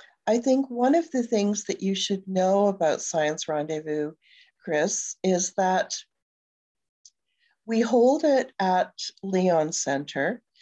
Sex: female